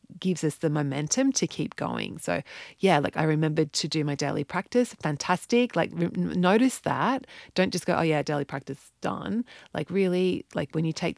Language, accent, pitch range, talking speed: English, Australian, 155-195 Hz, 190 wpm